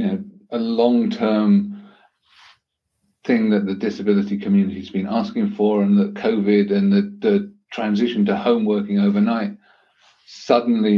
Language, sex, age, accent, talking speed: English, male, 50-69, British, 135 wpm